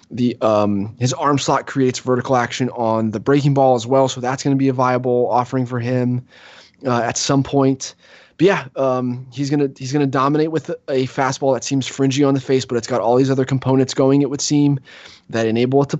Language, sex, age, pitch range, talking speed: English, male, 20-39, 115-135 Hz, 225 wpm